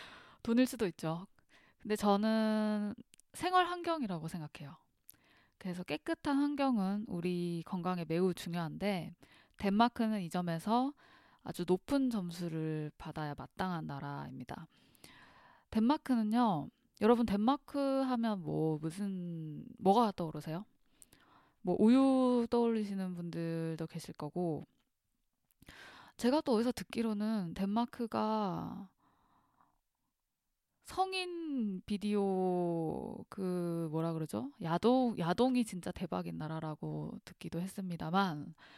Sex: female